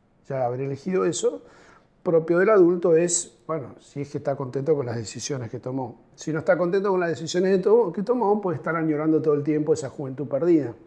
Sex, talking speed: male, 215 wpm